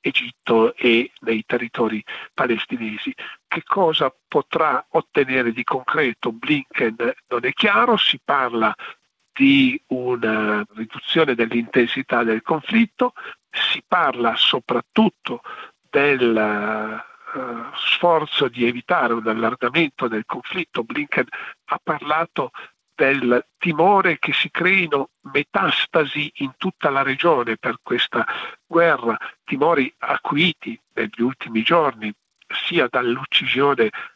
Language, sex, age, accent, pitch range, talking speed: Italian, male, 50-69, native, 110-135 Hz, 100 wpm